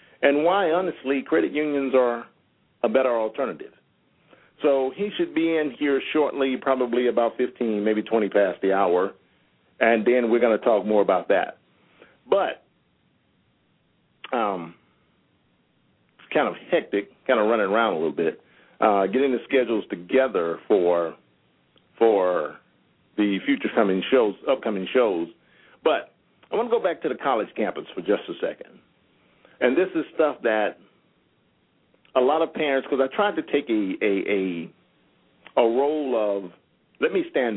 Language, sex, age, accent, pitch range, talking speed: English, male, 50-69, American, 105-145 Hz, 155 wpm